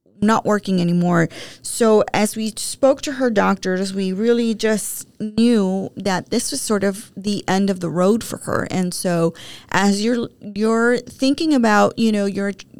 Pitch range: 185-220 Hz